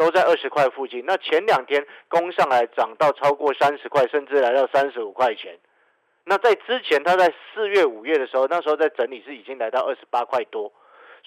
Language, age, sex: Chinese, 50-69, male